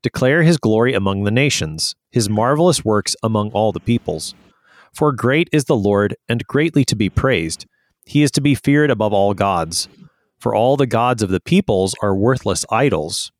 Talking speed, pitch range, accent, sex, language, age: 185 wpm, 105-140 Hz, American, male, English, 30-49